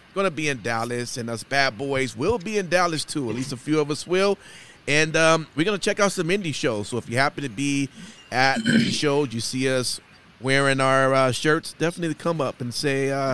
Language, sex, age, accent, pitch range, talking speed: English, male, 30-49, American, 120-150 Hz, 230 wpm